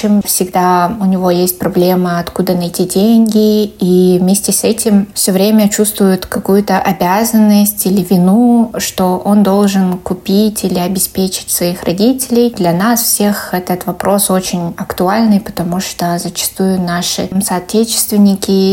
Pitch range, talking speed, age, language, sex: 180-205 Hz, 125 wpm, 20-39, Russian, female